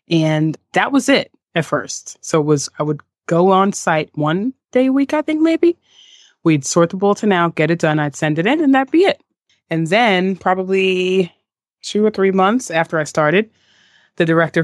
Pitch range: 155-190 Hz